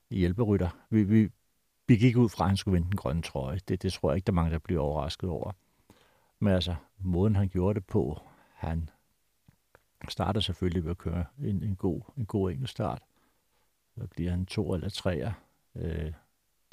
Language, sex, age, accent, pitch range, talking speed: Danish, male, 60-79, native, 90-115 Hz, 185 wpm